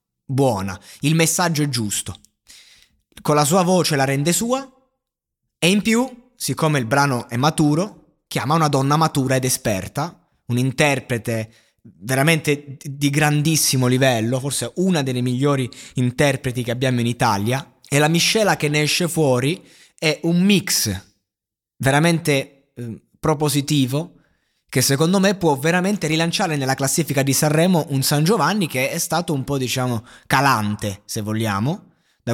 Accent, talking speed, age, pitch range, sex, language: native, 145 wpm, 20-39, 130-165 Hz, male, Italian